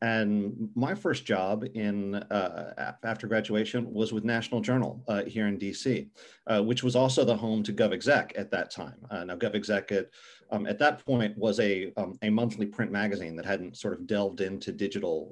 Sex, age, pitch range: male, 40-59, 105-125 Hz